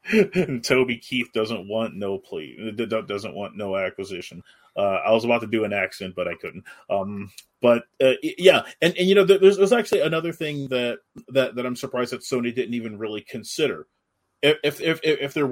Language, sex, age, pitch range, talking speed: English, male, 30-49, 120-185 Hz, 195 wpm